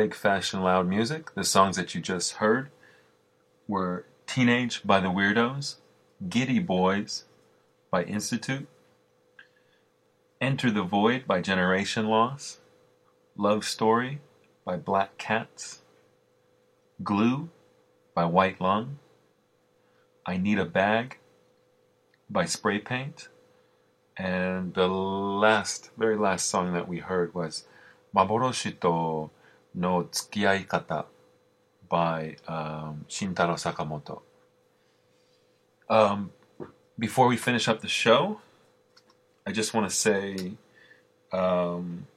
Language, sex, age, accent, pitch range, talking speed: English, male, 30-49, American, 65-100 Hz, 105 wpm